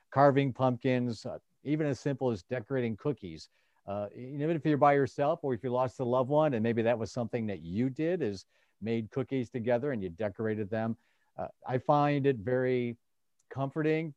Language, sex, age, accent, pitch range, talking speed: English, male, 50-69, American, 105-135 Hz, 185 wpm